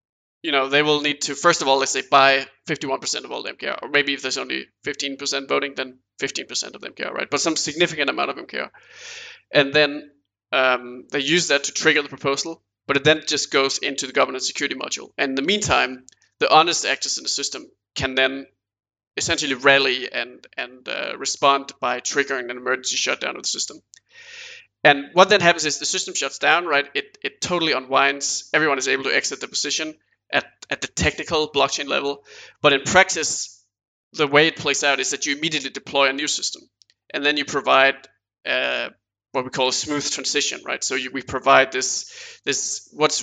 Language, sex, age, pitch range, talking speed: English, male, 20-39, 135-155 Hz, 200 wpm